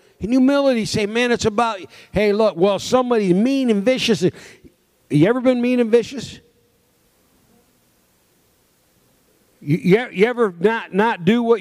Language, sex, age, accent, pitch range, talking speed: English, male, 50-69, American, 145-215 Hz, 140 wpm